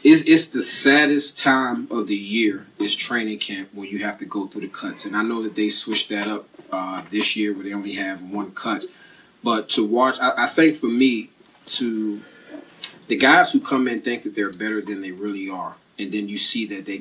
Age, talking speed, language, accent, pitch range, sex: 30-49, 225 wpm, English, American, 105-145 Hz, male